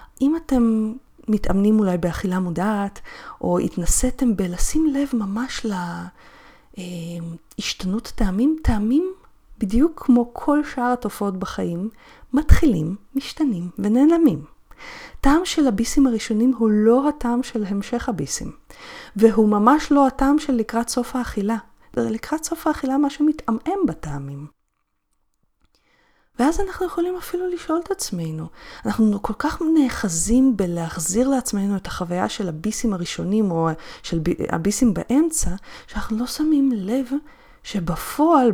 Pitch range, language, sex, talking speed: 185-275 Hz, Hebrew, female, 120 wpm